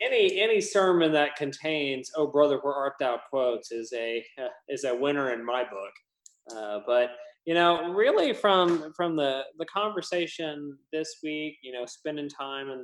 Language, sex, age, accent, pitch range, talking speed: English, male, 20-39, American, 125-155 Hz, 170 wpm